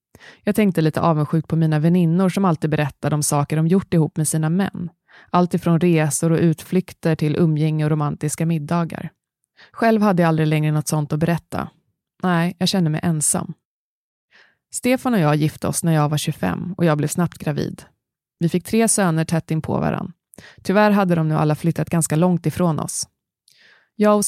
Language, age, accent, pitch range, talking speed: Swedish, 20-39, native, 155-185 Hz, 190 wpm